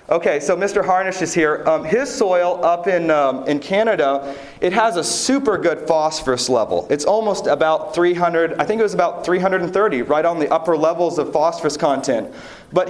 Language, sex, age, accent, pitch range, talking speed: English, male, 40-59, American, 160-200 Hz, 185 wpm